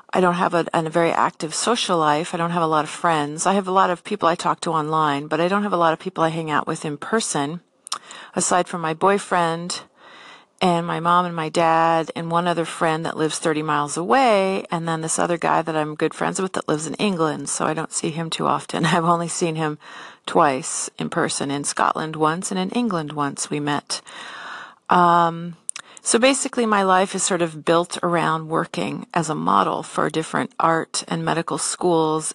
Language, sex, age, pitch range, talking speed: English, female, 40-59, 160-185 Hz, 215 wpm